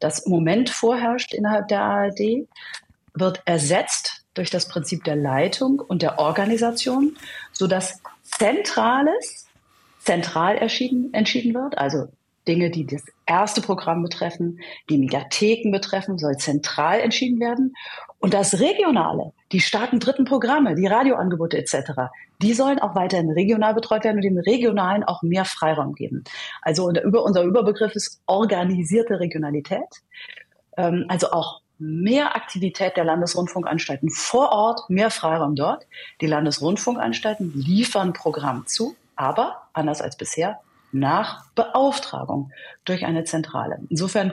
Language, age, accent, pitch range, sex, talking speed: German, 40-59, German, 165-225 Hz, female, 125 wpm